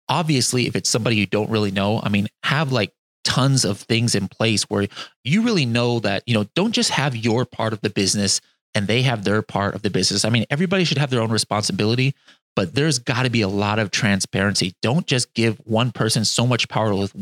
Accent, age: American, 30-49